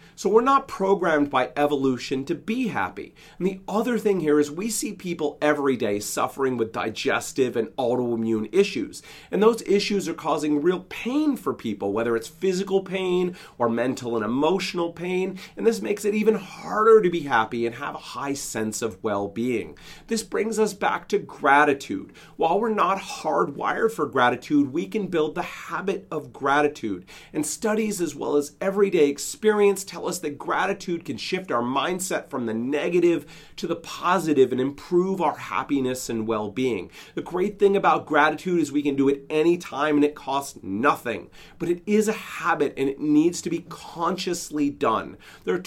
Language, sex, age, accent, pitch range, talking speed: English, male, 40-59, American, 140-190 Hz, 175 wpm